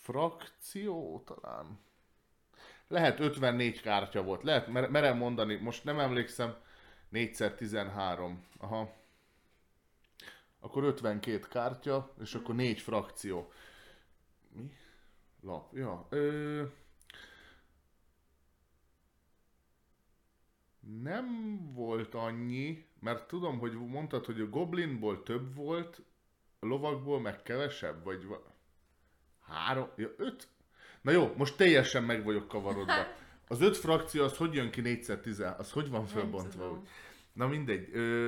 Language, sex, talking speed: Hungarian, male, 110 wpm